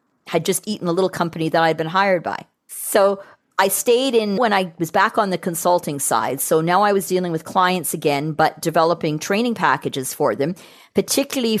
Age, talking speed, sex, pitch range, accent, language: 40-59, 195 wpm, female, 160-195 Hz, American, English